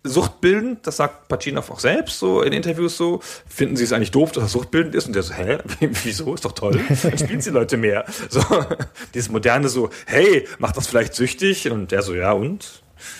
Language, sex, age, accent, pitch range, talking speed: German, male, 40-59, German, 110-155 Hz, 210 wpm